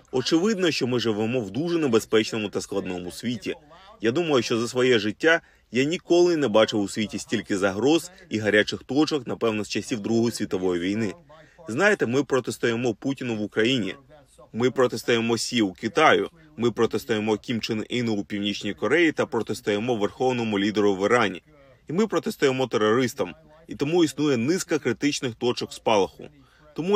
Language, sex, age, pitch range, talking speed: Ukrainian, male, 30-49, 110-145 Hz, 155 wpm